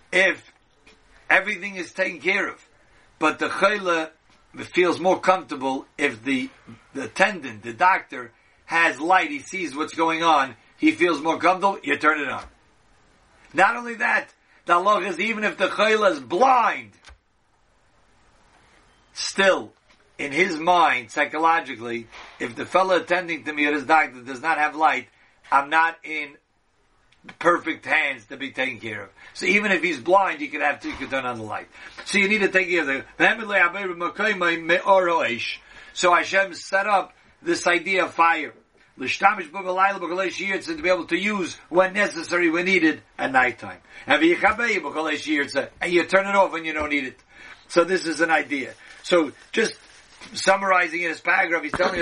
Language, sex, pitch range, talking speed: English, male, 155-190 Hz, 155 wpm